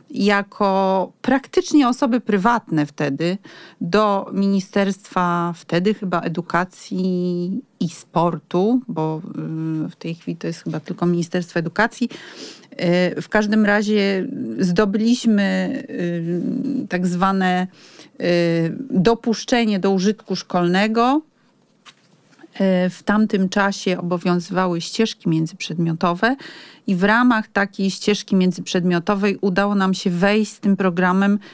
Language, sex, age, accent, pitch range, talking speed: Polish, female, 40-59, native, 180-230 Hz, 95 wpm